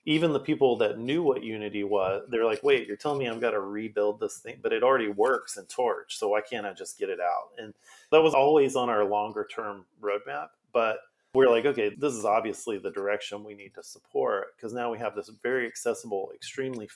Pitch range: 105-145 Hz